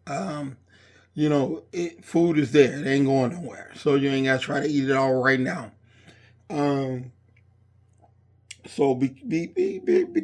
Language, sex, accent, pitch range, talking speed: English, male, American, 110-150 Hz, 170 wpm